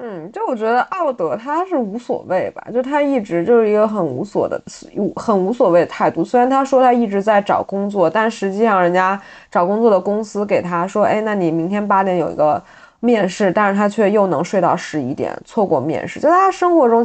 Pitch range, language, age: 190-255 Hz, Chinese, 20-39